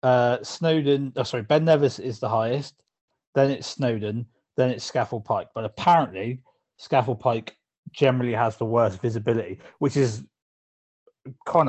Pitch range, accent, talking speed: 110-130 Hz, British, 145 wpm